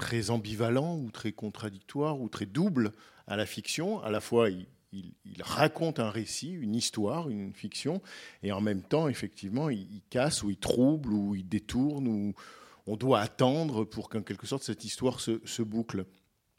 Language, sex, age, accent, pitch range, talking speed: French, male, 50-69, French, 110-145 Hz, 185 wpm